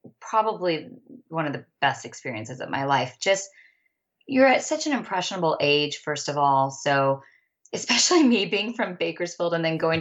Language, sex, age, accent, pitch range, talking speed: English, female, 20-39, American, 140-175 Hz, 170 wpm